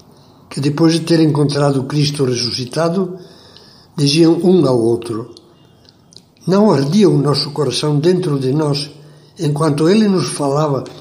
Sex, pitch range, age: male, 125-165 Hz, 60-79